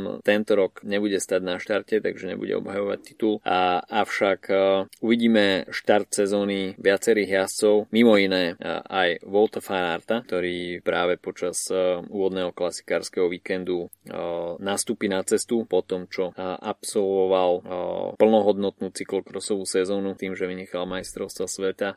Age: 20-39